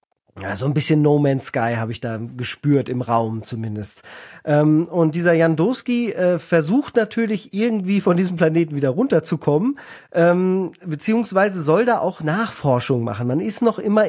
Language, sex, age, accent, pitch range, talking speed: German, male, 40-59, German, 145-200 Hz, 160 wpm